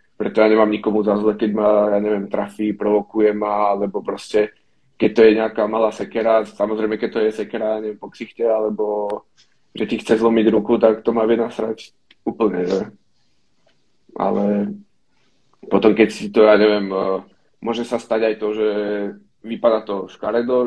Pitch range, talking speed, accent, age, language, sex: 105-115 Hz, 175 wpm, native, 20-39, Czech, male